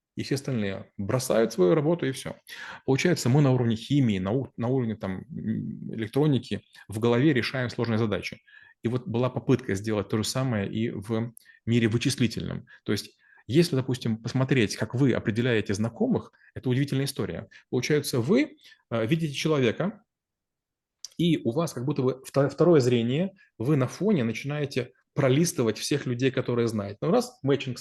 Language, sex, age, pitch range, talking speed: Russian, male, 20-39, 115-145 Hz, 160 wpm